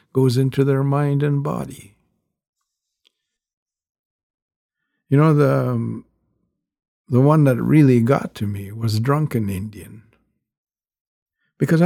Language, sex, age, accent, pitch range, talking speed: English, male, 60-79, American, 115-155 Hz, 105 wpm